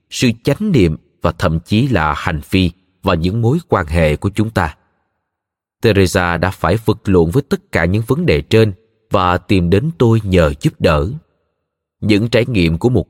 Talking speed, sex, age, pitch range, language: 190 wpm, male, 20-39, 90-125 Hz, Vietnamese